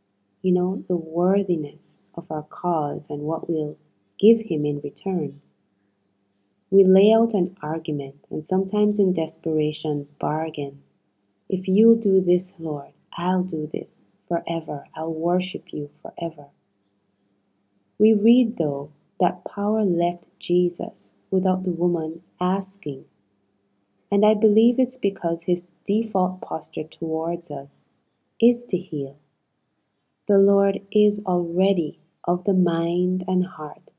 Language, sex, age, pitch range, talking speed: English, female, 30-49, 150-190 Hz, 125 wpm